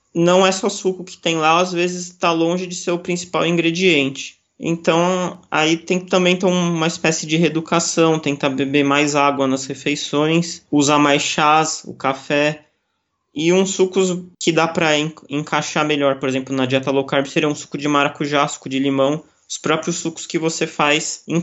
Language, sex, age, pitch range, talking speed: Portuguese, male, 20-39, 140-175 Hz, 190 wpm